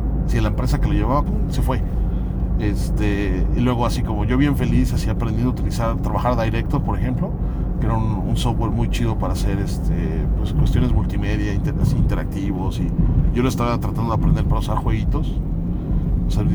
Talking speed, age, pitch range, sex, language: 180 wpm, 40-59, 95-135 Hz, male, Spanish